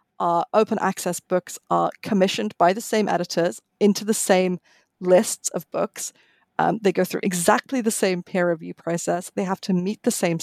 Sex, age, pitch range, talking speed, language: female, 30-49, 185-225 Hz, 185 wpm, English